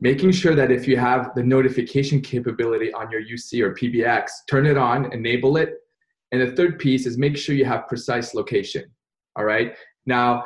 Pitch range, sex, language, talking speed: 120-145 Hz, male, English, 190 wpm